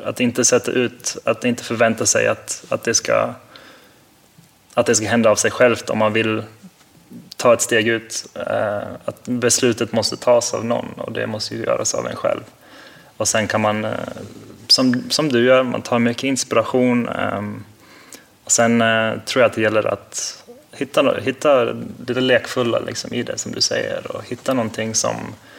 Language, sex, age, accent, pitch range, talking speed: English, male, 20-39, Swedish, 110-120 Hz, 170 wpm